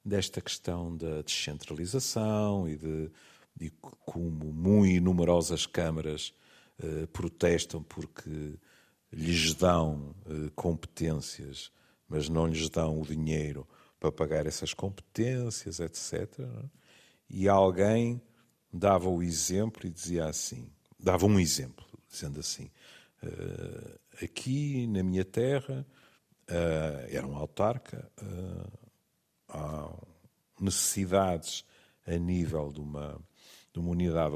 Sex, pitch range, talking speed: male, 80-120 Hz, 105 wpm